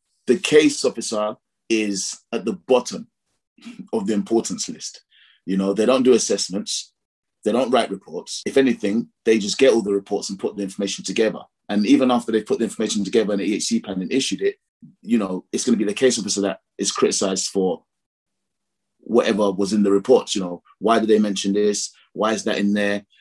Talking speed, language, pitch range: 205 wpm, English, 100-125 Hz